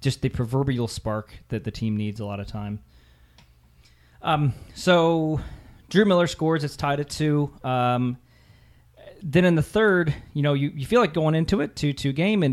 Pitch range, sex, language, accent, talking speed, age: 110-145 Hz, male, English, American, 185 wpm, 30-49